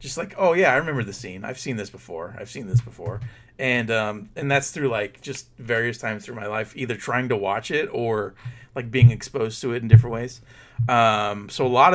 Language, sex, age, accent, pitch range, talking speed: English, male, 30-49, American, 115-135 Hz, 230 wpm